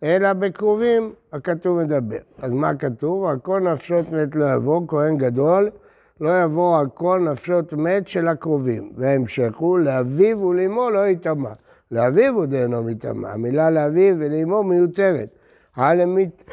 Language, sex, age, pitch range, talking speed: Hebrew, male, 60-79, 140-180 Hz, 130 wpm